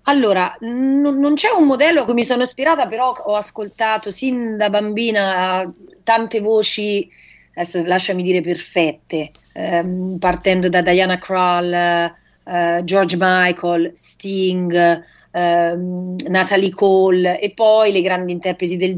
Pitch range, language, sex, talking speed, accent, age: 175-200 Hz, English, female, 130 wpm, Italian, 30-49